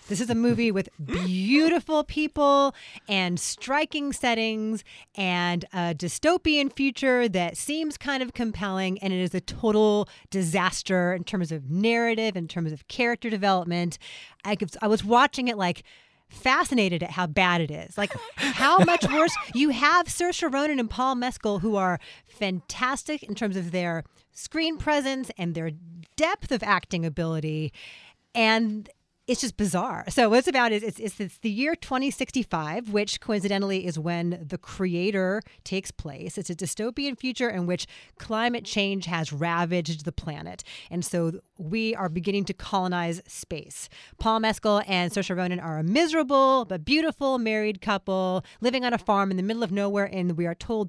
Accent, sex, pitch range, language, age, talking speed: American, female, 180-255 Hz, English, 30-49, 165 wpm